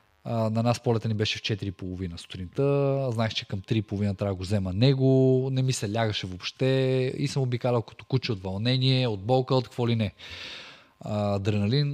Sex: male